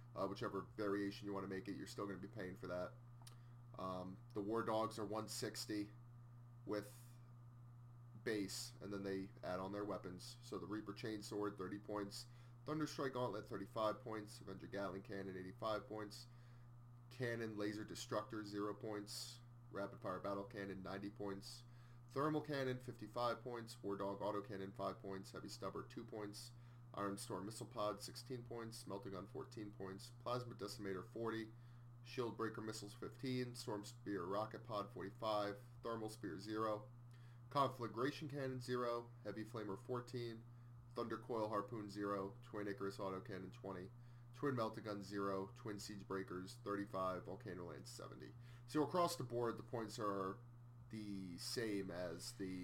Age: 30-49